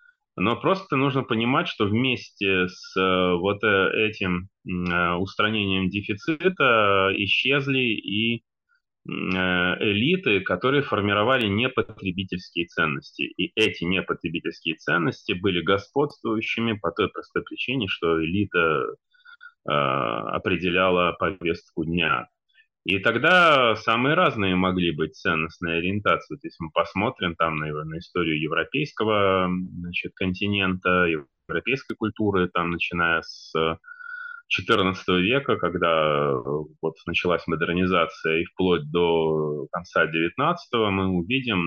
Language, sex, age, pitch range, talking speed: Russian, male, 20-39, 85-115 Hz, 100 wpm